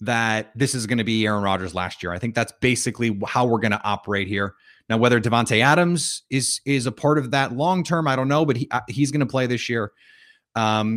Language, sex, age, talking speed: English, male, 30-49, 240 wpm